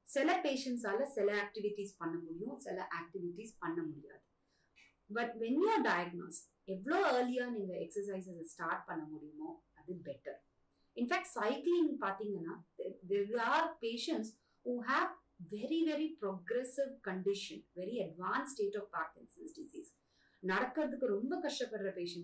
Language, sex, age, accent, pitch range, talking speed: English, female, 30-49, Indian, 190-285 Hz, 115 wpm